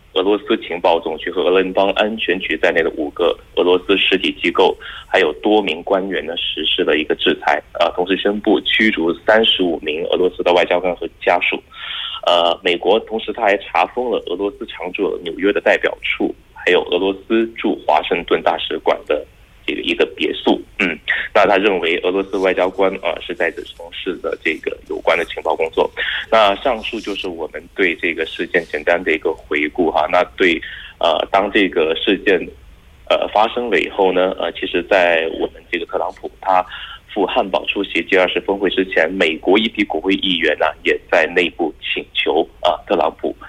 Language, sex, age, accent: Korean, male, 20-39, Chinese